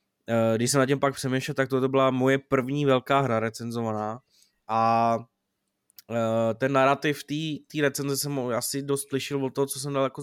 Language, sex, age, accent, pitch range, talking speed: Czech, male, 20-39, native, 120-140 Hz, 165 wpm